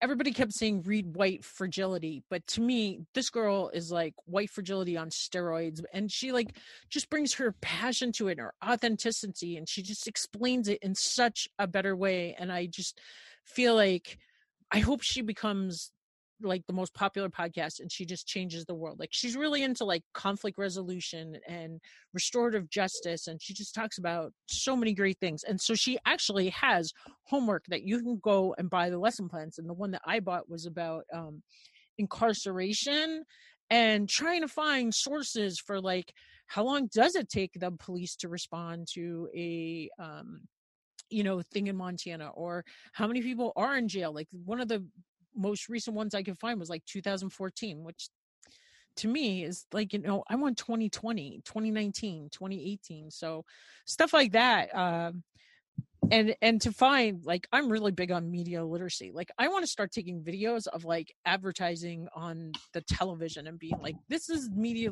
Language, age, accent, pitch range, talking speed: English, 40-59, American, 175-225 Hz, 180 wpm